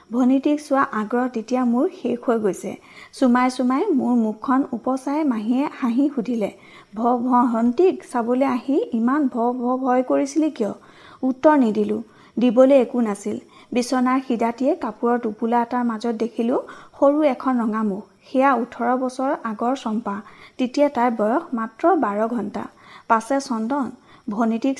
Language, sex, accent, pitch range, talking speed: Hindi, female, native, 225-275 Hz, 110 wpm